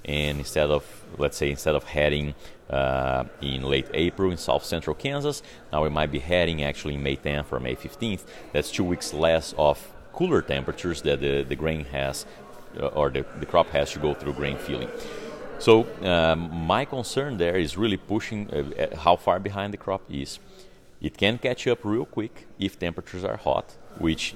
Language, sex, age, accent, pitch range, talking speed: English, male, 40-59, Brazilian, 70-95 Hz, 185 wpm